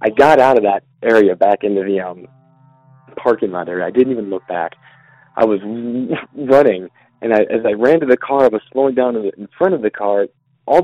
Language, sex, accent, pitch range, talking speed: English, male, American, 105-140 Hz, 215 wpm